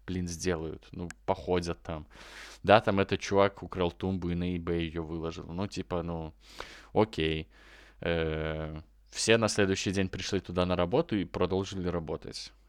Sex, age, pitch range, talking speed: male, 20-39, 85-105 Hz, 150 wpm